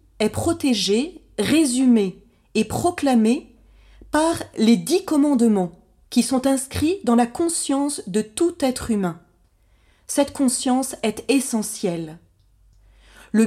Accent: French